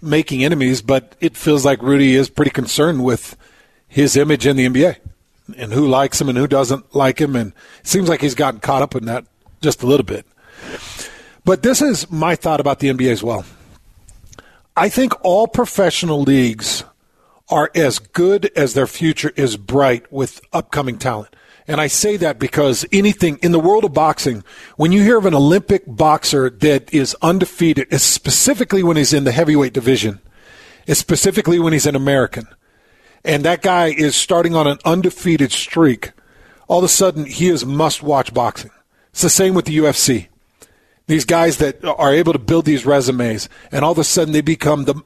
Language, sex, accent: English, male, American